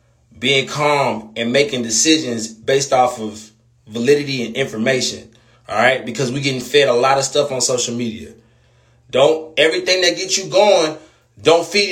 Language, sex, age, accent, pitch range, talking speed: English, male, 20-39, American, 120-175 Hz, 160 wpm